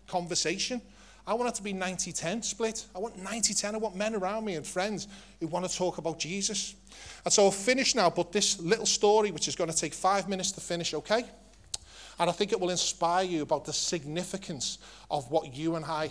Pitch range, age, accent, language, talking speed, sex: 150-200 Hz, 30-49, British, English, 215 wpm, male